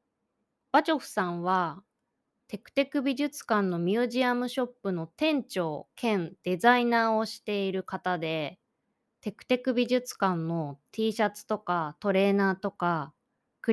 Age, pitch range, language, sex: 20-39, 180-245 Hz, Japanese, female